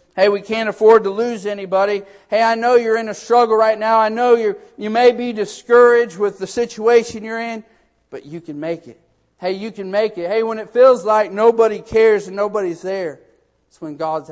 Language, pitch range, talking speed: English, 155-210 Hz, 215 wpm